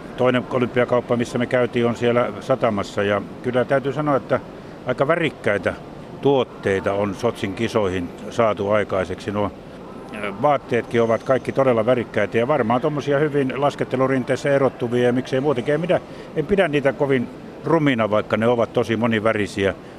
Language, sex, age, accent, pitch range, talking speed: Finnish, male, 60-79, native, 110-140 Hz, 140 wpm